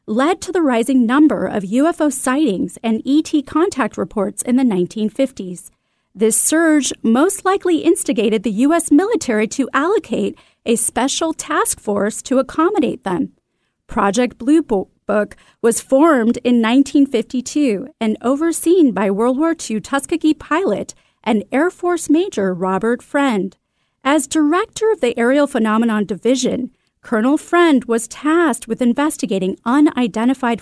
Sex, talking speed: female, 130 wpm